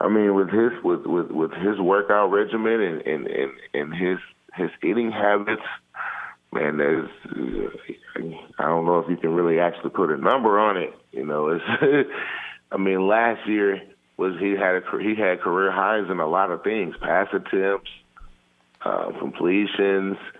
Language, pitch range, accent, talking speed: English, 85-100 Hz, American, 170 wpm